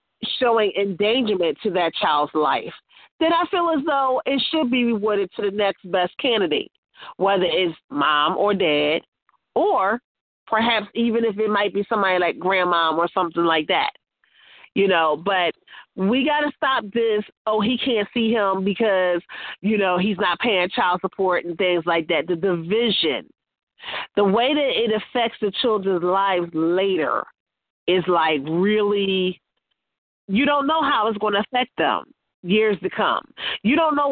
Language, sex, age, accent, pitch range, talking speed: English, female, 40-59, American, 190-245 Hz, 165 wpm